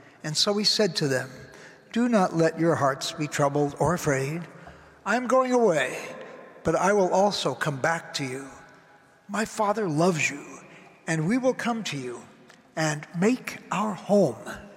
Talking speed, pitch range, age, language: 165 wpm, 170-215 Hz, 60-79, English